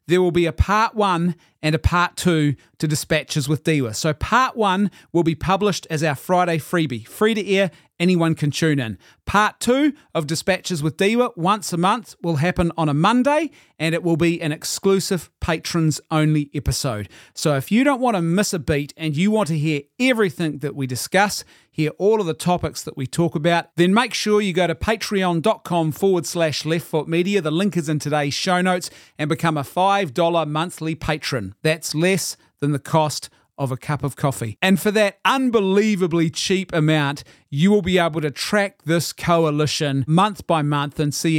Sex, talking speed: male, 195 wpm